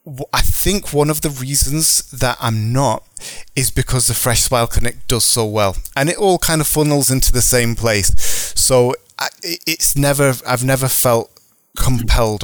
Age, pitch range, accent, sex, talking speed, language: 20-39, 100-125 Hz, British, male, 170 wpm, English